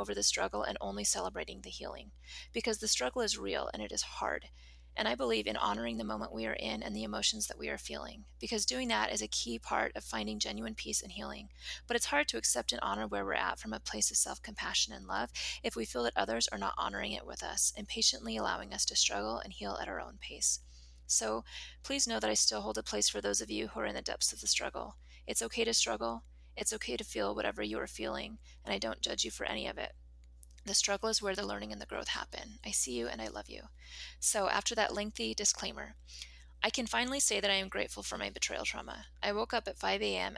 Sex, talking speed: female, 250 wpm